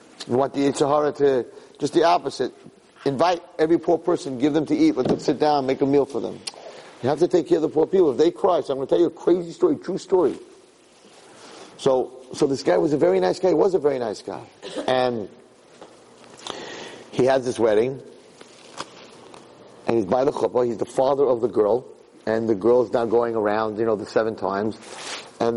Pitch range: 125-170 Hz